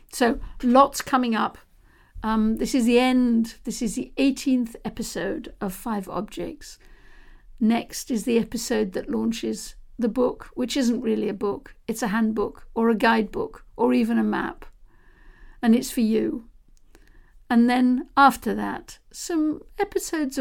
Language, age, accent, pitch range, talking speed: English, 60-79, British, 215-250 Hz, 145 wpm